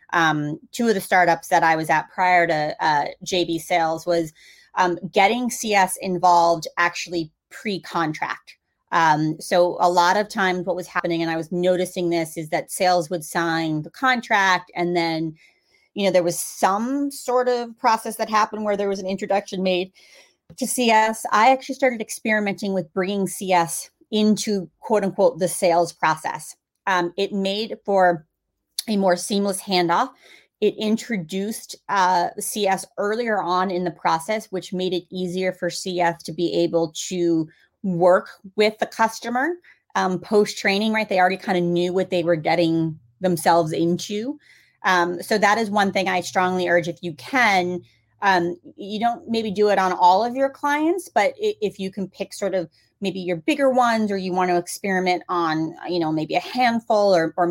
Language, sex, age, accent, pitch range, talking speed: English, female, 30-49, American, 175-210 Hz, 175 wpm